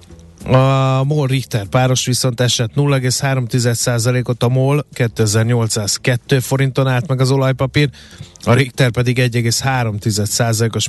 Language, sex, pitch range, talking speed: Hungarian, male, 115-135 Hz, 105 wpm